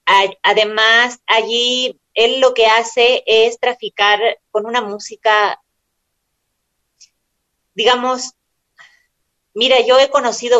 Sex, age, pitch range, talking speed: female, 30-49, 185-230 Hz, 90 wpm